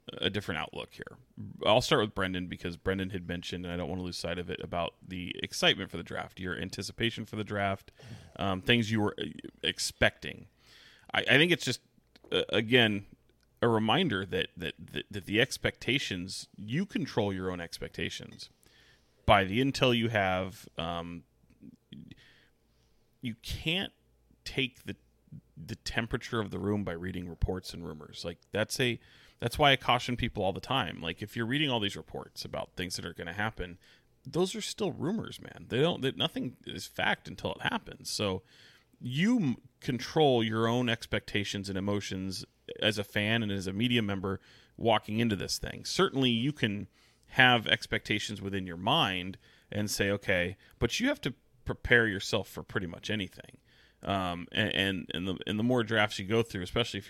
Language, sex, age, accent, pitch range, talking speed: English, male, 30-49, American, 95-120 Hz, 180 wpm